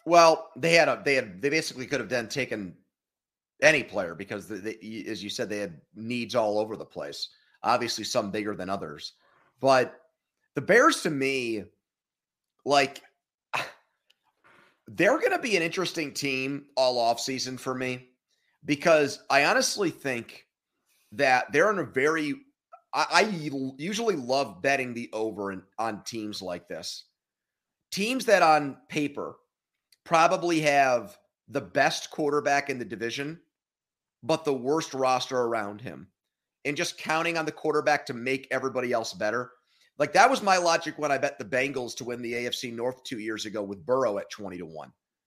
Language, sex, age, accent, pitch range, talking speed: English, male, 30-49, American, 120-155 Hz, 165 wpm